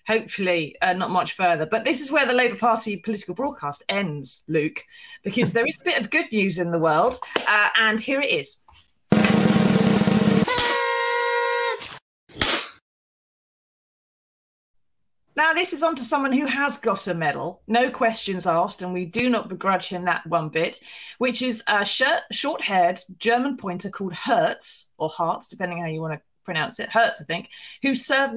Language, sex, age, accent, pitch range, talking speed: English, female, 30-49, British, 175-250 Hz, 165 wpm